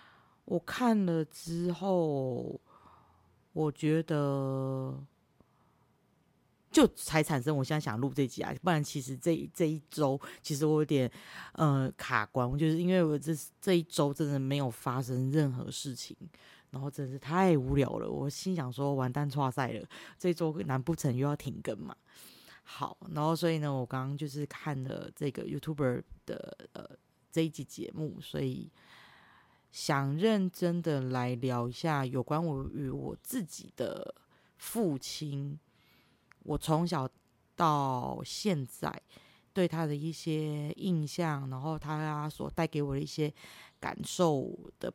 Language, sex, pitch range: Chinese, female, 140-170 Hz